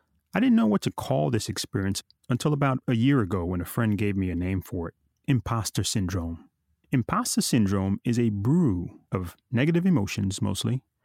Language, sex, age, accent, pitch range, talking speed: English, male, 30-49, American, 100-145 Hz, 180 wpm